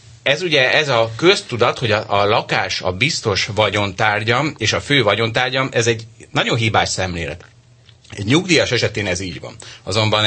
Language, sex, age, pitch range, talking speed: Hungarian, male, 30-49, 105-125 Hz, 165 wpm